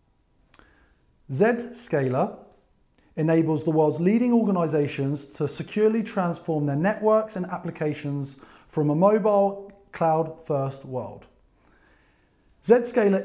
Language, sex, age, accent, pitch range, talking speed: English, male, 30-49, British, 145-200 Hz, 85 wpm